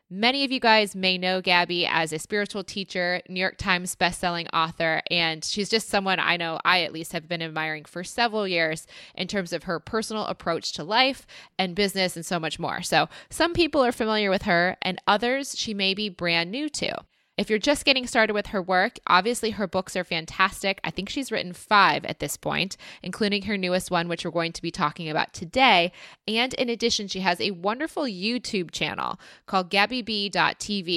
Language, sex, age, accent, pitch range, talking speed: English, female, 20-39, American, 175-210 Hz, 200 wpm